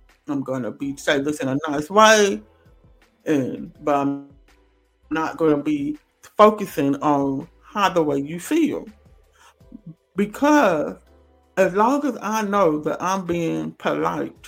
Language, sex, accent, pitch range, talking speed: English, male, American, 155-220 Hz, 140 wpm